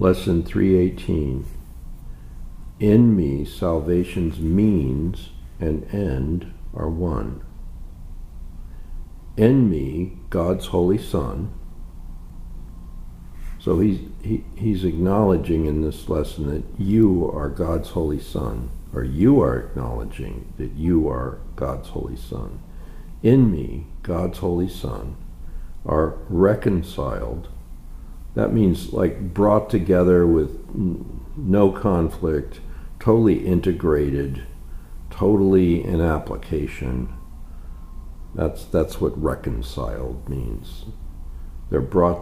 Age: 60-79